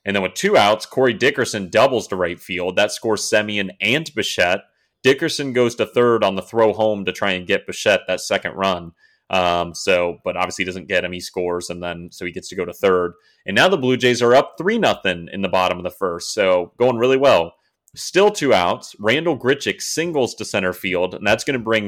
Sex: male